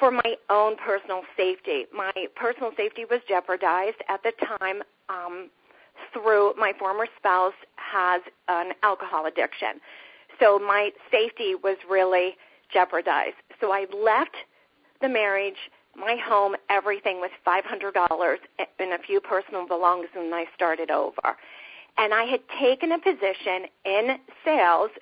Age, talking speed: 40-59, 130 wpm